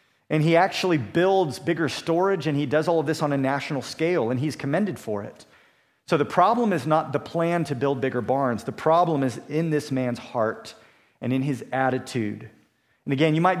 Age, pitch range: 40-59, 130-160 Hz